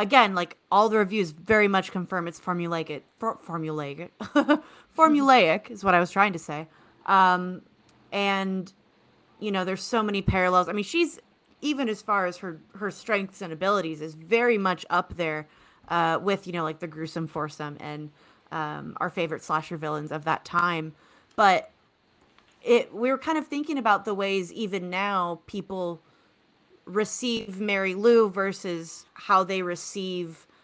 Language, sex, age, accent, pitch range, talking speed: English, female, 30-49, American, 165-210 Hz, 160 wpm